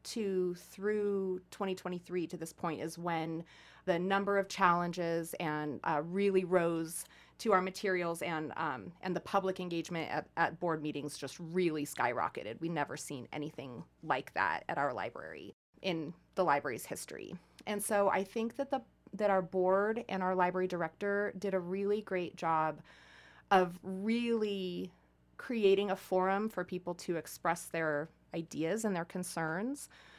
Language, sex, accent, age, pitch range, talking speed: English, female, American, 30-49, 170-205 Hz, 155 wpm